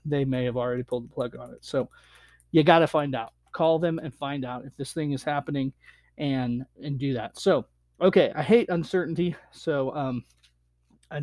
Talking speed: 200 wpm